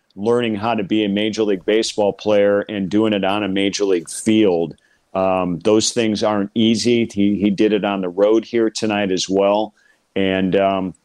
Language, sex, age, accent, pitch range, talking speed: English, male, 40-59, American, 100-115 Hz, 185 wpm